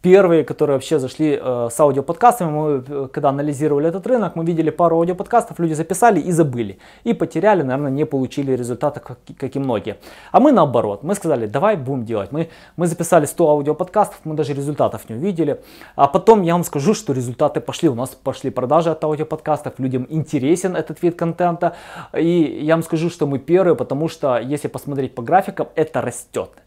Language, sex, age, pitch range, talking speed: Russian, male, 20-39, 135-175 Hz, 185 wpm